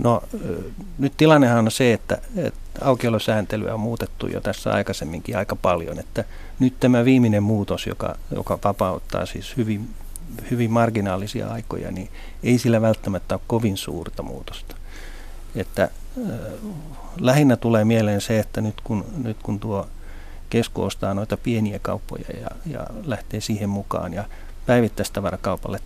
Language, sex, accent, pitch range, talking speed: Finnish, male, native, 95-115 Hz, 140 wpm